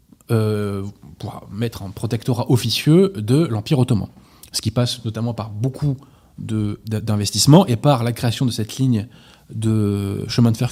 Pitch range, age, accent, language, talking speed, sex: 110-145 Hz, 20-39, French, French, 150 wpm, male